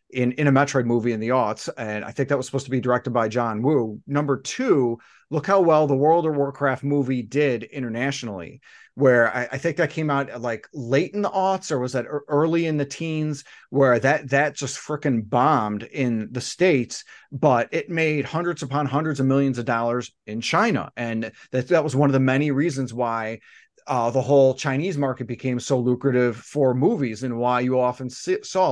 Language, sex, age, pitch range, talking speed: English, male, 30-49, 125-150 Hz, 205 wpm